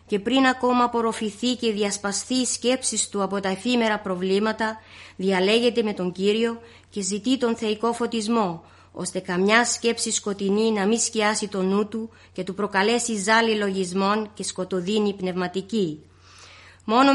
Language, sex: Greek, female